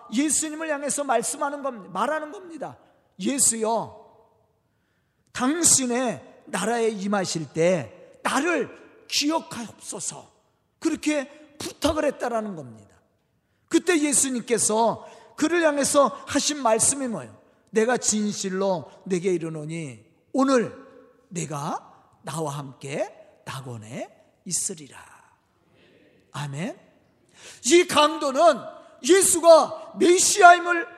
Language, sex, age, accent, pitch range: Korean, male, 40-59, native, 215-305 Hz